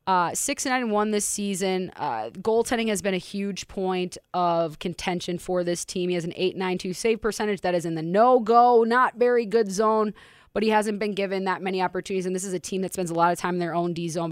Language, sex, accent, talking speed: English, female, American, 230 wpm